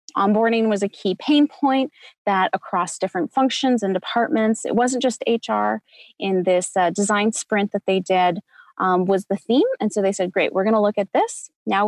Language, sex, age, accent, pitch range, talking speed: English, female, 20-39, American, 190-245 Hz, 200 wpm